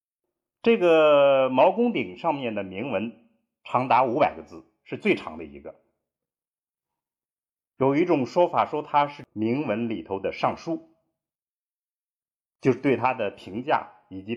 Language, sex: Chinese, male